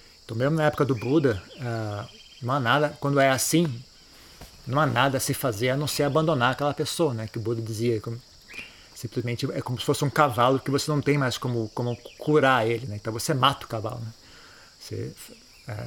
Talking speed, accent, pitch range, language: 210 wpm, Brazilian, 115-145 Hz, Portuguese